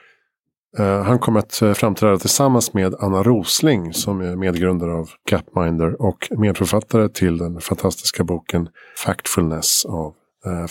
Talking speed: 135 wpm